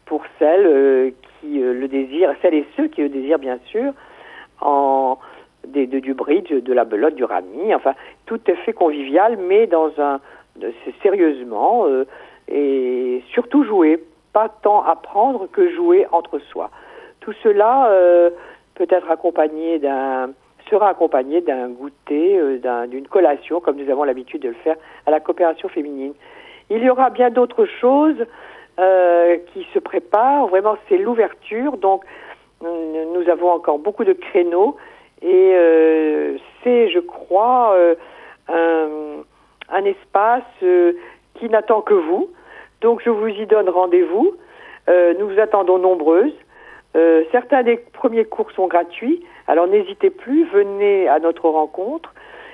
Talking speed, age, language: 150 wpm, 50-69, French